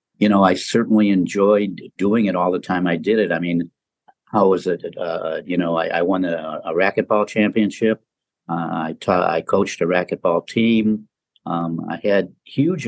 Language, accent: English, American